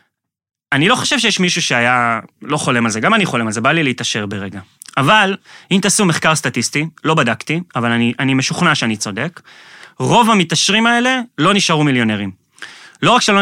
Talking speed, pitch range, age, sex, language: 185 wpm, 130-180 Hz, 30-49, male, Hebrew